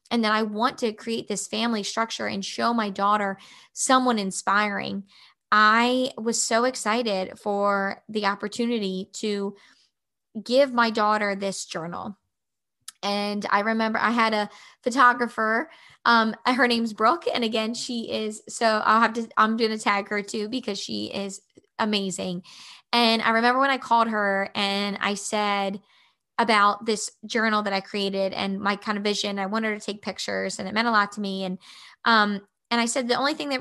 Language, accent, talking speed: English, American, 175 wpm